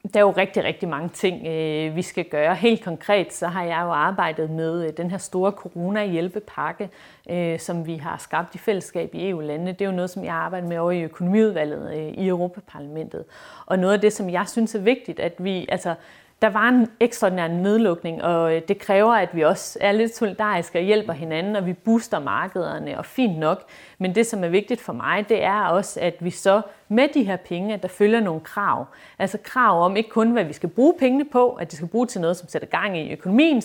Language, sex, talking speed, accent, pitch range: Danish, female, 220 wpm, native, 175-220 Hz